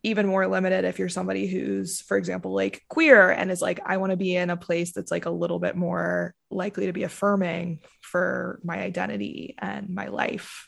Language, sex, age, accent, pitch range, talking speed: English, female, 20-39, American, 175-200 Hz, 210 wpm